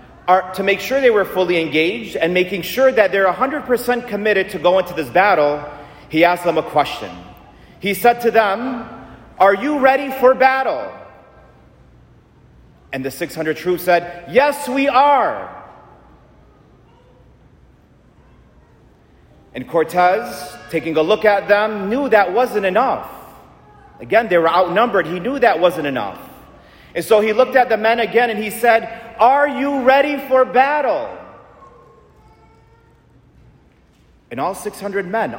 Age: 40-59